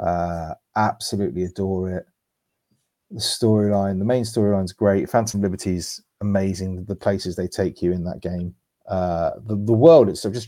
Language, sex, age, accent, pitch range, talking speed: English, male, 30-49, British, 100-115 Hz, 165 wpm